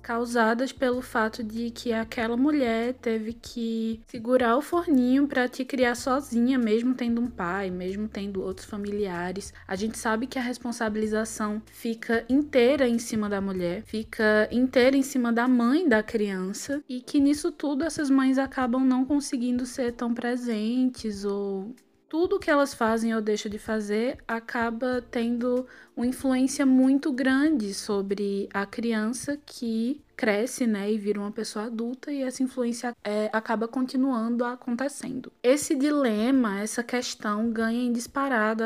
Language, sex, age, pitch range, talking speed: Portuguese, female, 20-39, 220-265 Hz, 145 wpm